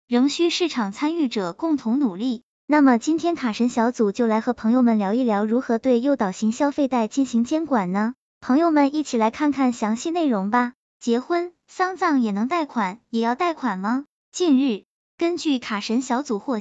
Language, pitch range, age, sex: Chinese, 225-290 Hz, 10-29, male